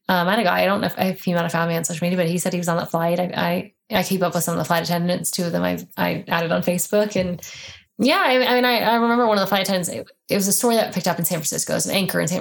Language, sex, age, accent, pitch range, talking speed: English, female, 20-39, American, 175-215 Hz, 350 wpm